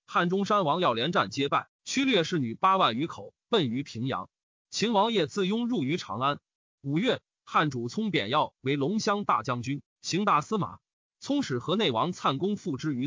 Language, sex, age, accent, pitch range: Chinese, male, 30-49, native, 150-205 Hz